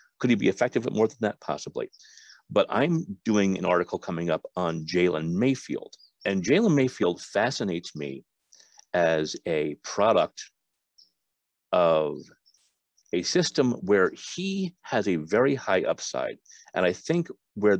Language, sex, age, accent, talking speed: English, male, 50-69, American, 140 wpm